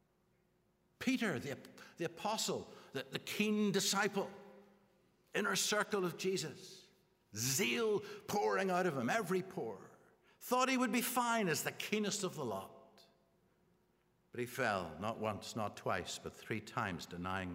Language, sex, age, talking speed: English, male, 60-79, 140 wpm